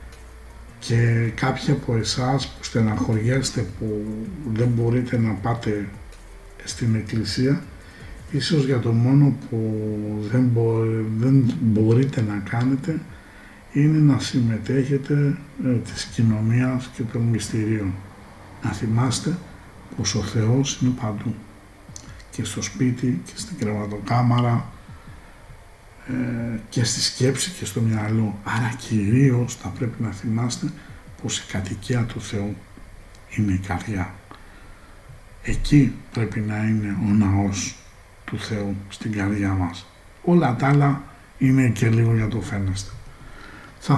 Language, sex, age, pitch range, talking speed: Greek, male, 60-79, 105-125 Hz, 115 wpm